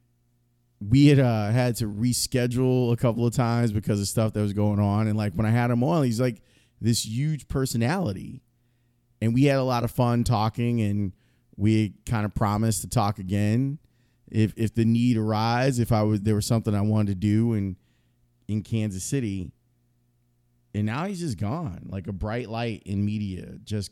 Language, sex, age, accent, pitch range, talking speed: English, male, 30-49, American, 105-120 Hz, 190 wpm